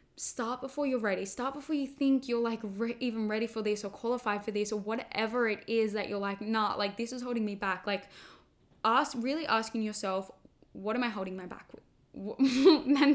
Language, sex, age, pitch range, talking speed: English, female, 10-29, 195-230 Hz, 210 wpm